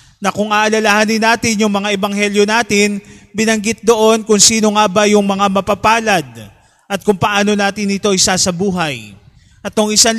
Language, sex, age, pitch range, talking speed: Filipino, male, 20-39, 185-225 Hz, 155 wpm